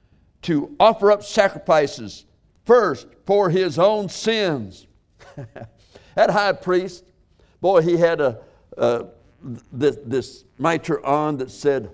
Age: 60-79